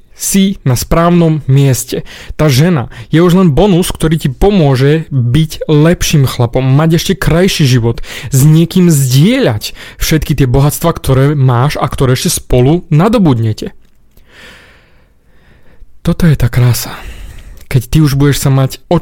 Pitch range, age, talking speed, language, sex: 125-170 Hz, 30-49, 140 wpm, Slovak, male